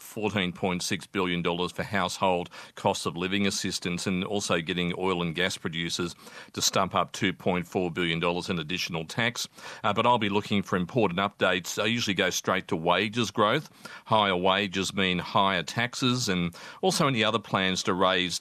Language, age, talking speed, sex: English, 40-59, 160 wpm, male